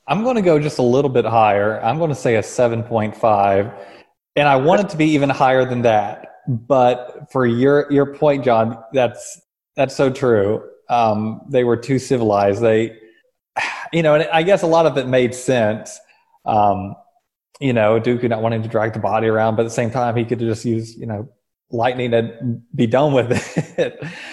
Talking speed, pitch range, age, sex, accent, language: 200 wpm, 115-150 Hz, 20-39, male, American, English